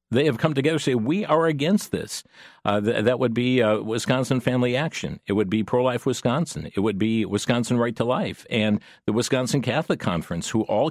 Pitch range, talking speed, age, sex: 105-135 Hz, 205 wpm, 50-69, male